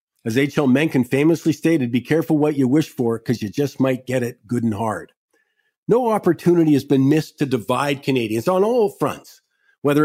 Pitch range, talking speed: 125-155 Hz, 190 wpm